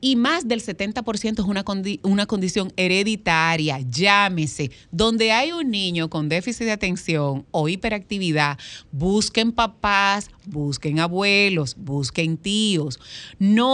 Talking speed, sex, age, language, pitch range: 120 wpm, female, 30-49, Spanish, 165-225 Hz